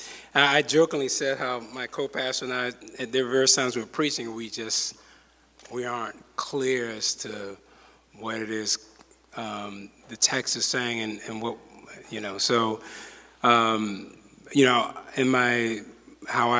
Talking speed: 150 wpm